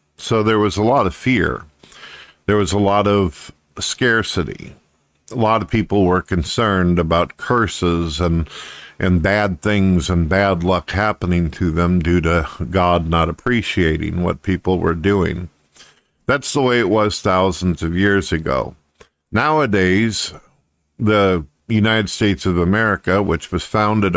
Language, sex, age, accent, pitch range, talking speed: English, male, 50-69, American, 85-105 Hz, 145 wpm